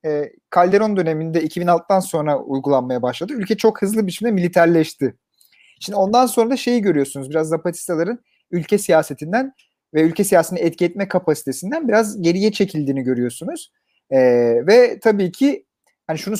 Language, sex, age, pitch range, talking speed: Turkish, male, 40-59, 145-210 Hz, 135 wpm